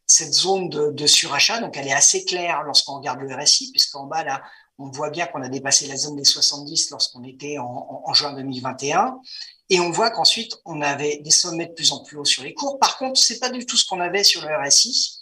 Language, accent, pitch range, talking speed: French, French, 135-180 Hz, 250 wpm